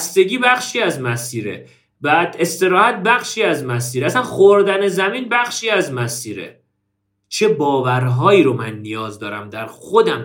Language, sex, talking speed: Persian, male, 135 wpm